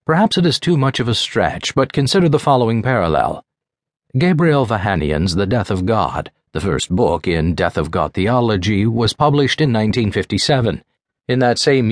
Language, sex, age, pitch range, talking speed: English, male, 50-69, 100-135 Hz, 170 wpm